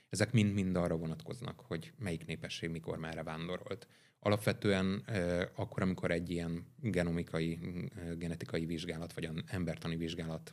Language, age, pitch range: Hungarian, 30-49, 85-105 Hz